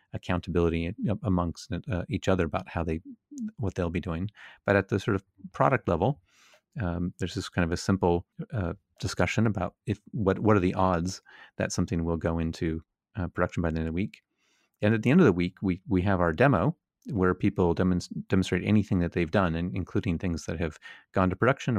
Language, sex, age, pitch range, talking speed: English, male, 30-49, 85-100 Hz, 210 wpm